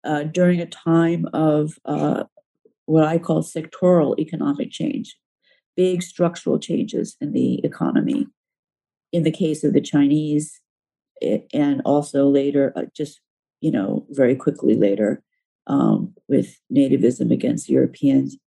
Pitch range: 145-180 Hz